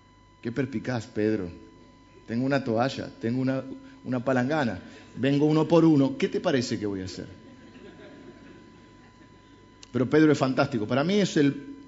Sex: male